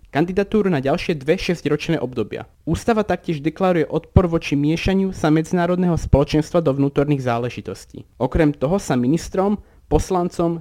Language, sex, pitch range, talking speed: Slovak, male, 130-180 Hz, 130 wpm